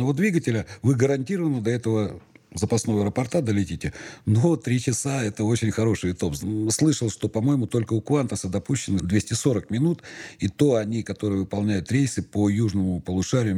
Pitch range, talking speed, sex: 95-115 Hz, 150 wpm, male